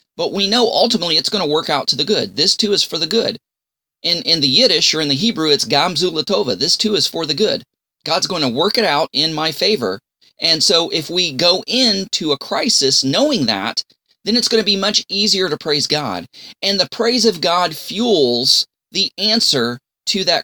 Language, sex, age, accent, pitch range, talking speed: English, male, 30-49, American, 155-225 Hz, 215 wpm